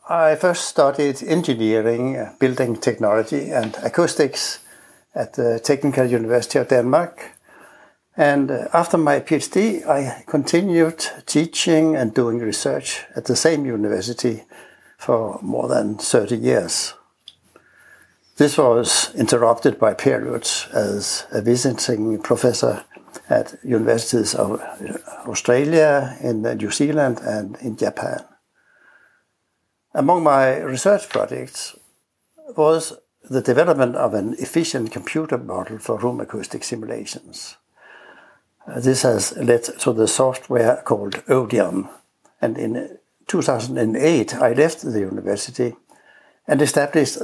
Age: 60-79